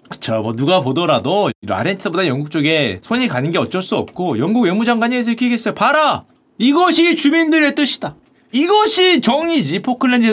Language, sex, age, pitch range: Korean, male, 40-59, 195-285 Hz